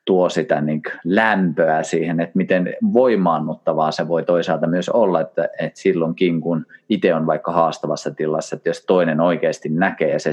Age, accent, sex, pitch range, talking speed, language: 30-49, native, male, 80-110 Hz, 165 wpm, Finnish